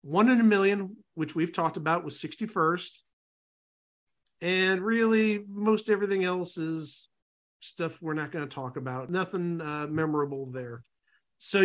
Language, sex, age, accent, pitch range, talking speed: English, male, 50-69, American, 160-210 Hz, 145 wpm